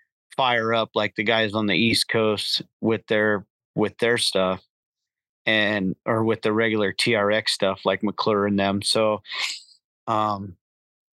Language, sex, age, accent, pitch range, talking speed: English, male, 40-59, American, 110-130 Hz, 145 wpm